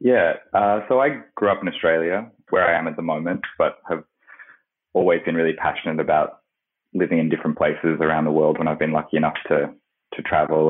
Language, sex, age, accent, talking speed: English, male, 20-39, Australian, 200 wpm